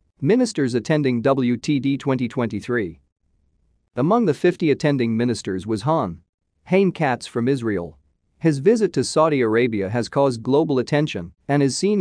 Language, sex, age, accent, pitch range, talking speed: English, male, 40-59, American, 105-150 Hz, 135 wpm